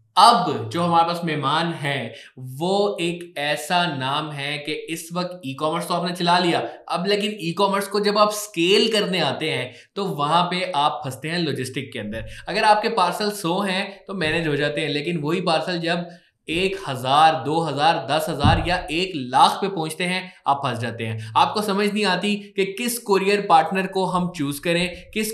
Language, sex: Hindi, male